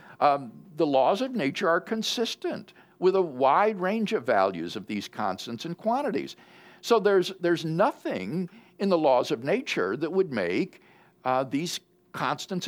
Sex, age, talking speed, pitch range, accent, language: male, 60-79, 150 wpm, 155-215 Hz, American, English